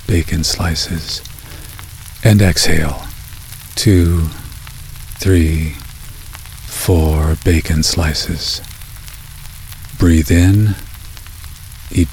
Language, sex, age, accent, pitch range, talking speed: English, male, 50-69, American, 80-105 Hz, 60 wpm